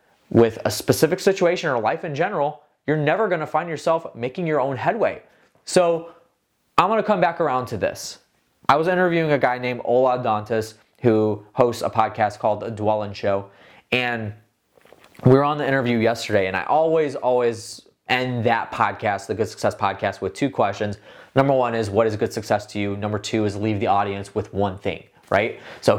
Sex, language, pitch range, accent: male, English, 115-170 Hz, American